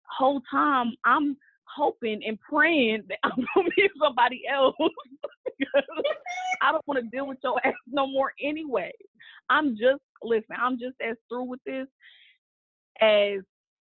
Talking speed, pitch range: 145 wpm, 210-275 Hz